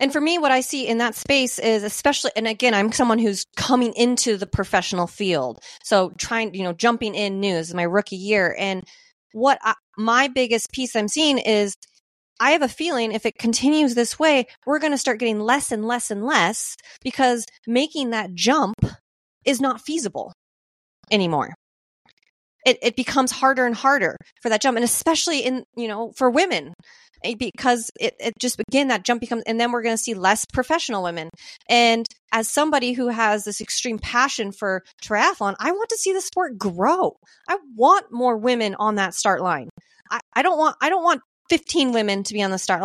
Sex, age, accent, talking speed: female, 30-49, American, 195 wpm